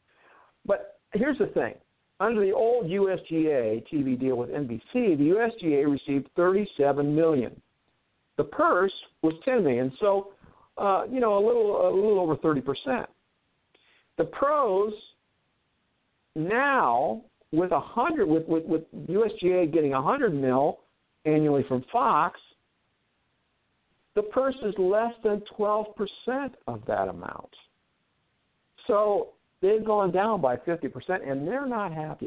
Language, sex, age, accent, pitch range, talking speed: English, male, 60-79, American, 140-225 Hz, 135 wpm